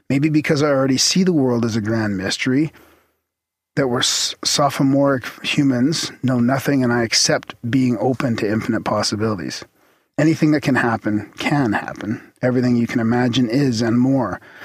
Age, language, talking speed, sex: 40-59, English, 155 wpm, male